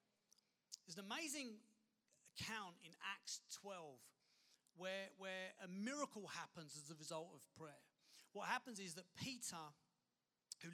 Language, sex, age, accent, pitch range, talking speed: English, male, 40-59, British, 175-220 Hz, 130 wpm